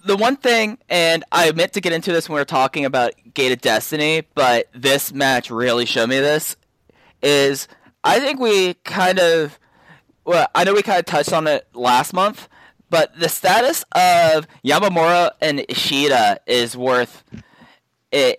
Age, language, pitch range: 10-29, English, 125-165 Hz